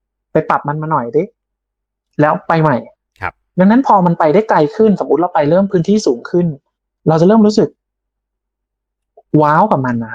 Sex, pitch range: male, 150-205 Hz